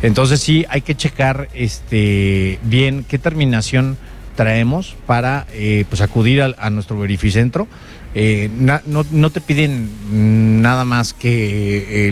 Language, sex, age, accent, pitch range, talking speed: English, male, 40-59, Mexican, 110-140 Hz, 140 wpm